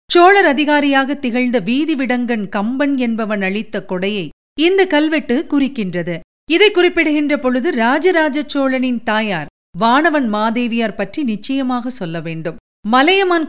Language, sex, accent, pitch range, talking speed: Tamil, female, native, 215-295 Hz, 105 wpm